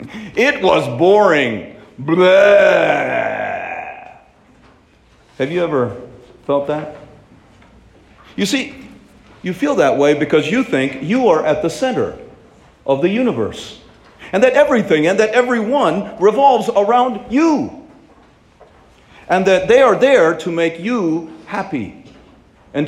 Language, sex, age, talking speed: English, male, 40-59, 115 wpm